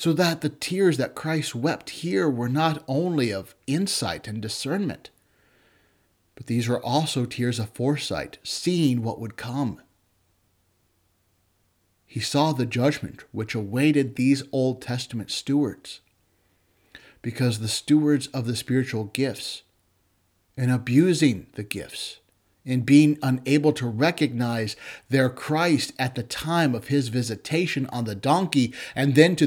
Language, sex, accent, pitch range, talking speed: English, male, American, 110-150 Hz, 135 wpm